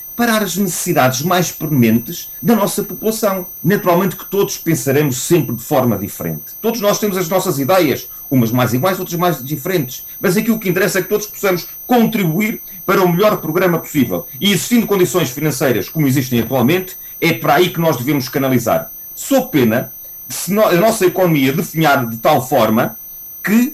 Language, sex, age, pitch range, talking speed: Portuguese, male, 40-59, 130-185 Hz, 170 wpm